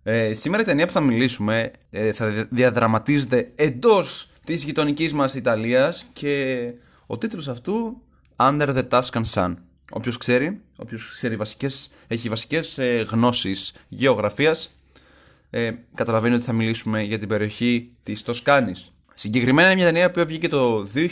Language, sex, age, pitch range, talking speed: Greek, male, 20-39, 110-160 Hz, 140 wpm